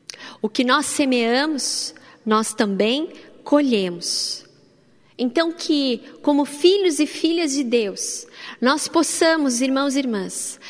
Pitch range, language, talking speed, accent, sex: 200-245 Hz, Portuguese, 110 wpm, Brazilian, female